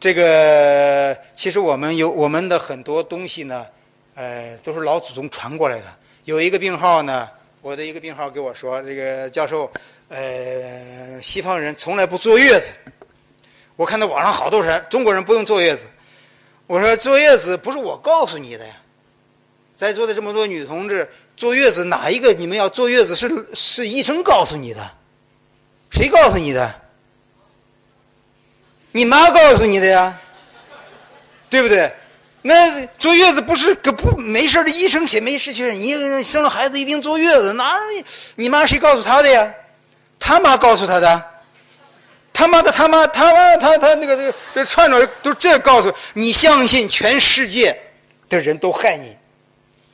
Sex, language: male, Chinese